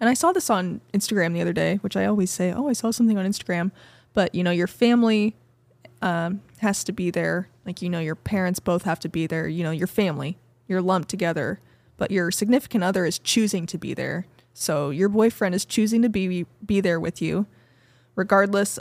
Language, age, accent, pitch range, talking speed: English, 20-39, American, 175-205 Hz, 215 wpm